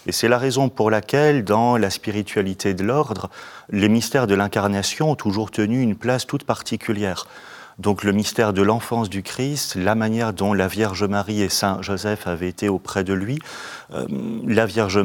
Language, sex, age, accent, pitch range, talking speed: French, male, 40-59, French, 95-120 Hz, 185 wpm